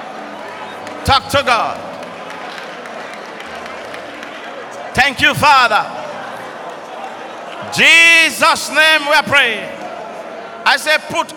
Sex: male